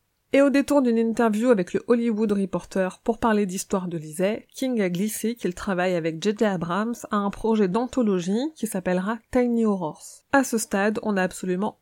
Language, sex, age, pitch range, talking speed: French, female, 30-49, 185-235 Hz, 185 wpm